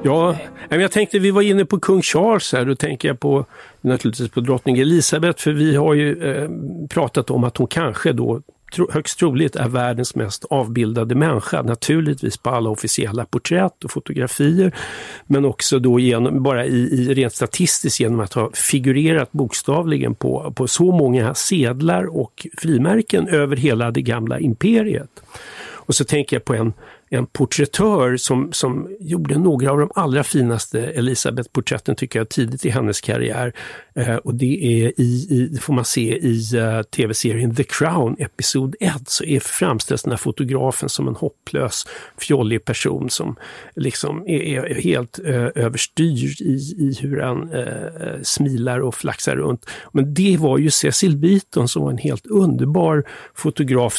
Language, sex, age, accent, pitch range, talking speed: Swedish, male, 50-69, native, 125-155 Hz, 165 wpm